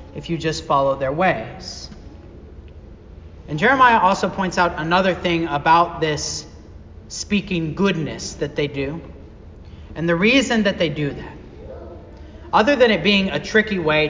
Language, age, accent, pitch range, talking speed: English, 40-59, American, 150-215 Hz, 145 wpm